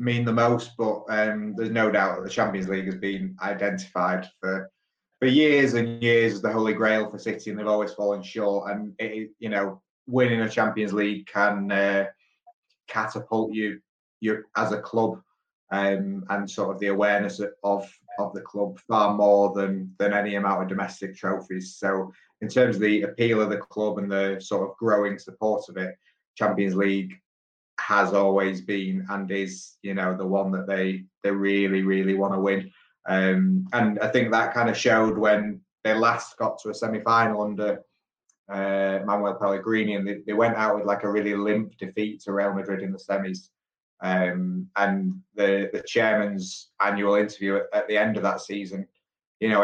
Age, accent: 20-39, British